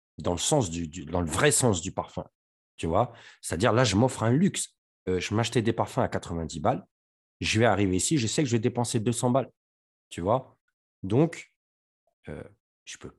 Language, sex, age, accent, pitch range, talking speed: French, male, 40-59, French, 90-120 Hz, 205 wpm